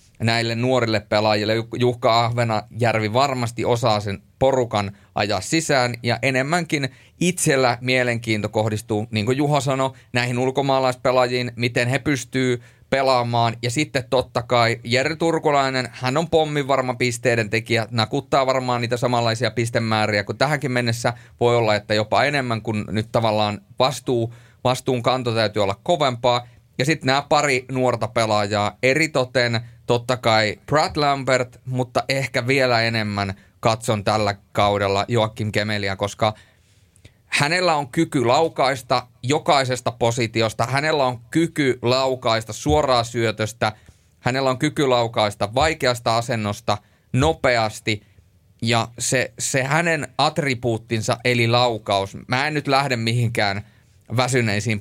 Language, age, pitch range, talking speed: Finnish, 30-49, 110-130 Hz, 125 wpm